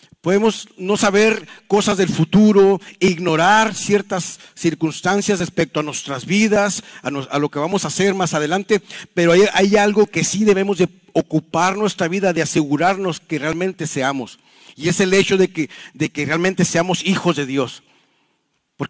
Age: 50-69